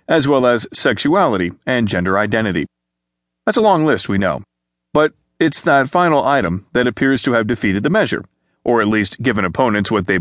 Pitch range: 100-155 Hz